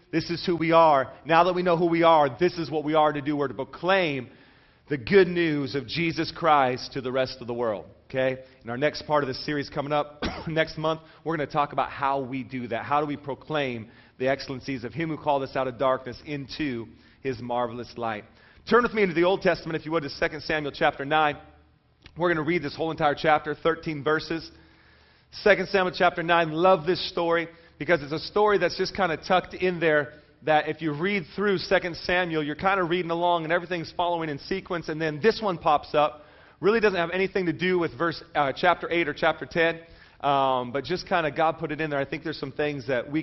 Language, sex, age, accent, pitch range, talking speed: English, male, 40-59, American, 140-175 Hz, 235 wpm